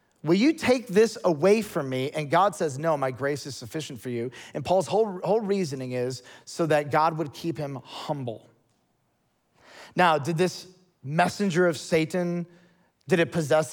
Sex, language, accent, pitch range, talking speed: male, English, American, 145-185 Hz, 170 wpm